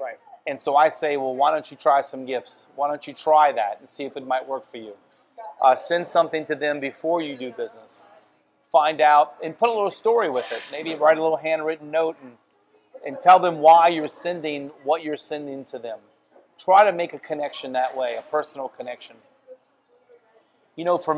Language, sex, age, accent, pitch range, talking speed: English, male, 40-59, American, 140-175 Hz, 205 wpm